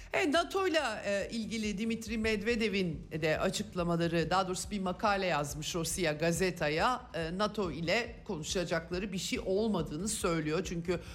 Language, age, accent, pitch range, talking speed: Turkish, 50-69, native, 160-210 Hz, 130 wpm